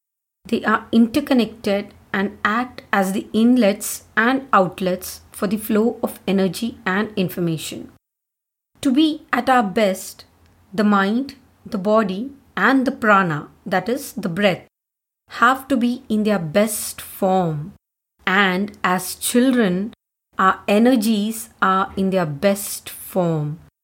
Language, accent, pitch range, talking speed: Hindi, native, 195-240 Hz, 125 wpm